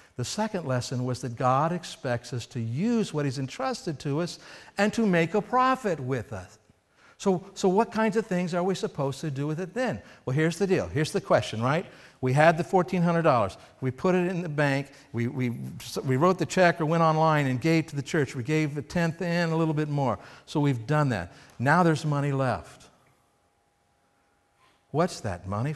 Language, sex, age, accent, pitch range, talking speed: English, male, 60-79, American, 130-175 Hz, 205 wpm